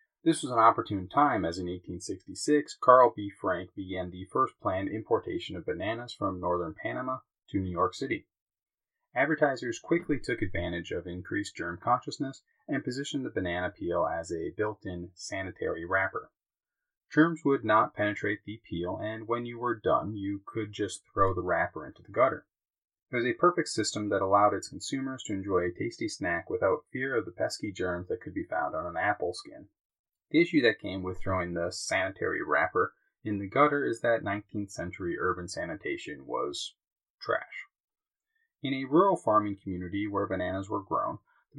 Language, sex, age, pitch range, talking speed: English, male, 30-49, 95-135 Hz, 175 wpm